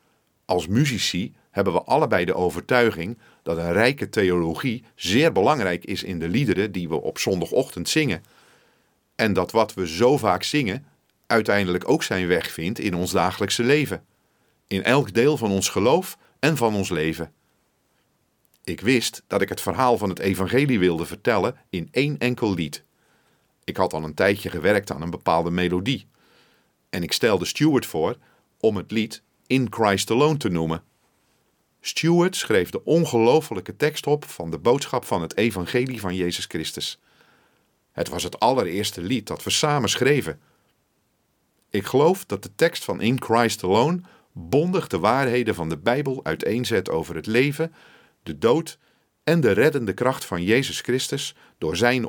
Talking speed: 160 wpm